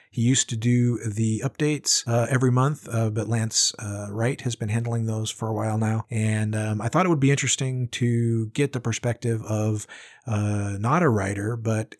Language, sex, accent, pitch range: English, male, American, 105-120 Hz